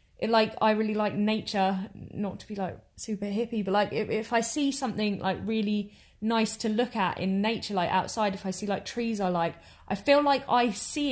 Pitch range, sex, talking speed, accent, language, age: 190-225 Hz, female, 215 wpm, British, English, 20-39